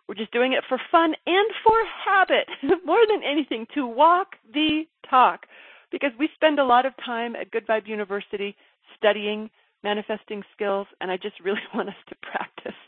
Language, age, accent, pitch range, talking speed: English, 40-59, American, 205-290 Hz, 175 wpm